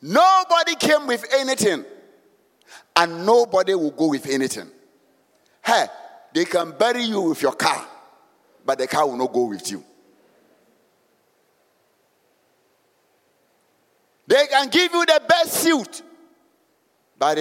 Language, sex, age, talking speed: English, male, 50-69, 115 wpm